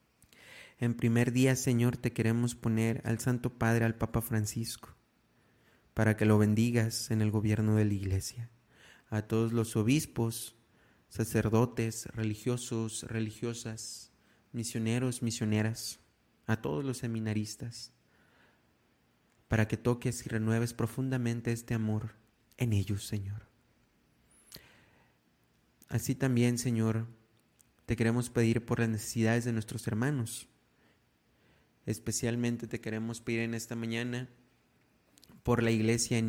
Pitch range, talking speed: 110-120 Hz, 115 wpm